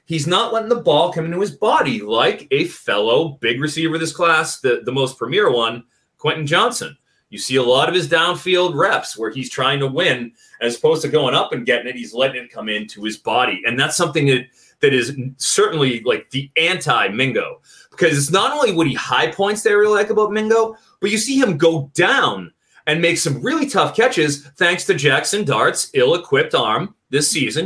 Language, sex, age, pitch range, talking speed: English, male, 30-49, 135-210 Hz, 205 wpm